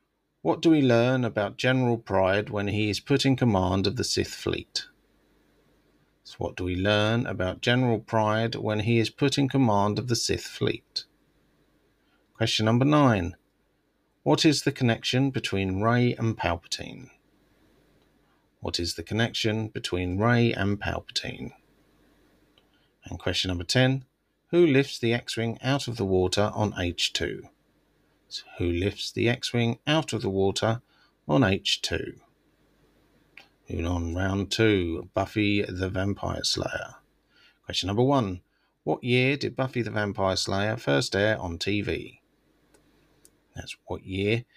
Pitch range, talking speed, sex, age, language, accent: 95-125 Hz, 140 wpm, male, 40-59, English, British